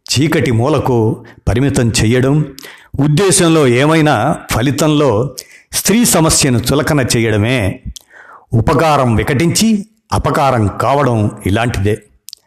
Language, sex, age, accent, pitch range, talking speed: Telugu, male, 50-69, native, 110-150 Hz, 75 wpm